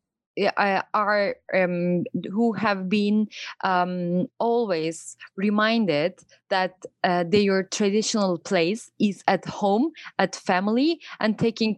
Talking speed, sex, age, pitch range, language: 110 wpm, female, 20-39, 175-215 Hz, Romanian